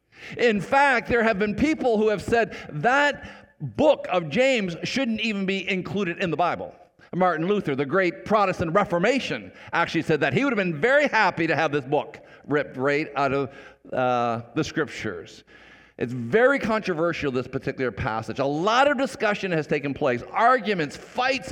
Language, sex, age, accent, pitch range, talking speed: English, male, 50-69, American, 145-210 Hz, 170 wpm